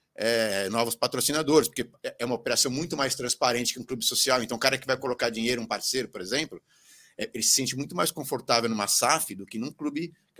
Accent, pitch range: Brazilian, 120-155 Hz